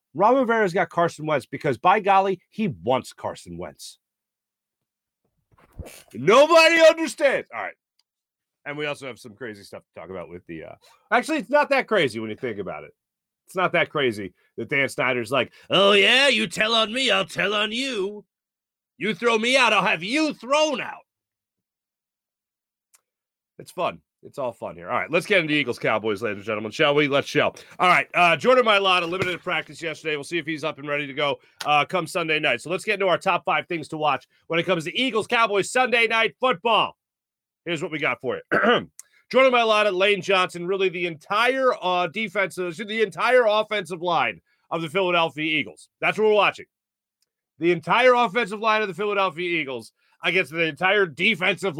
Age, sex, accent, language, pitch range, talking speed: 40-59, male, American, English, 160-220 Hz, 190 wpm